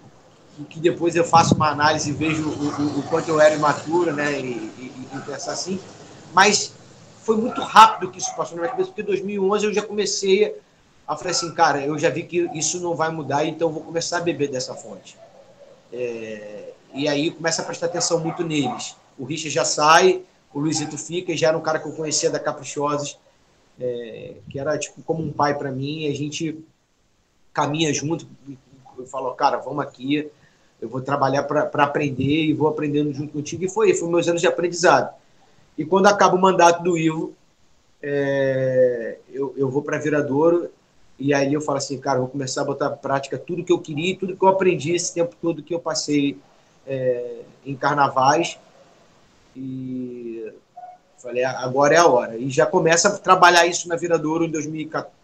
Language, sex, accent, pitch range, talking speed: Portuguese, male, Brazilian, 140-170 Hz, 190 wpm